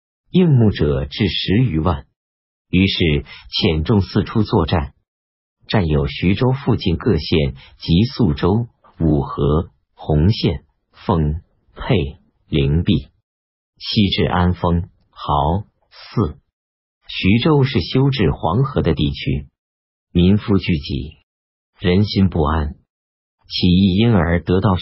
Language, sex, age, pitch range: Chinese, male, 50-69, 75-100 Hz